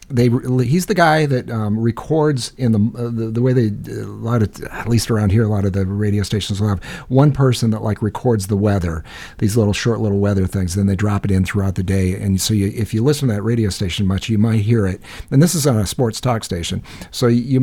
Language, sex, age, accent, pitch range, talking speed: English, male, 50-69, American, 100-125 Hz, 255 wpm